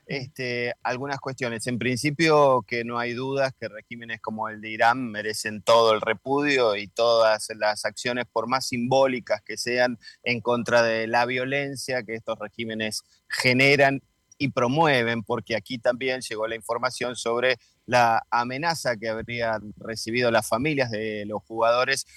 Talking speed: 150 wpm